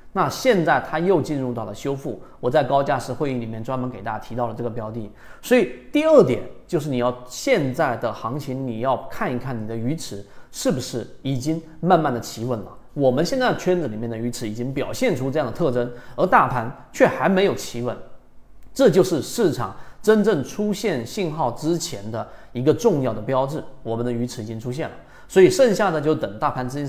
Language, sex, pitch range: Chinese, male, 115-150 Hz